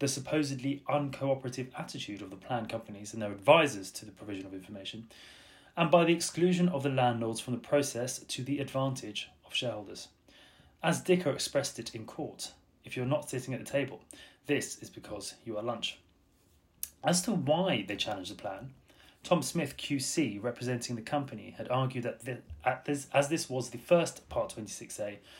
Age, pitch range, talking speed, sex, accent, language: 30-49, 110-140 Hz, 180 wpm, male, British, English